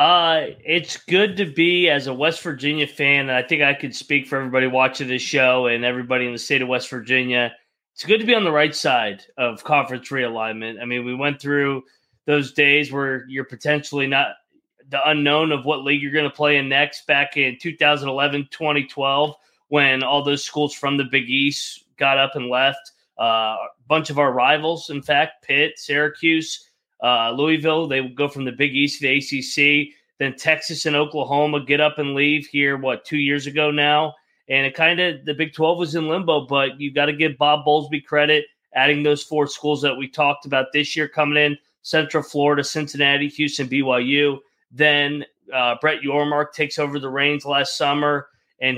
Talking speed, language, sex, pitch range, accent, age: 195 wpm, English, male, 135-155 Hz, American, 20-39